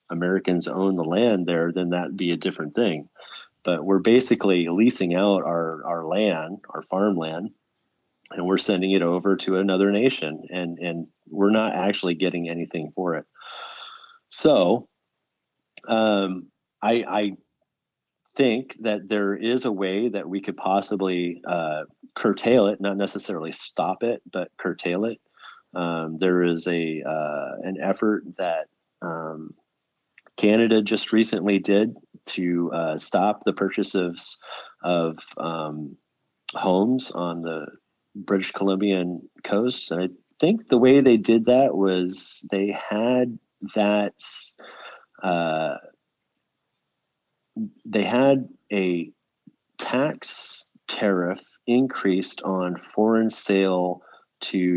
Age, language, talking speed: 30-49, English, 125 wpm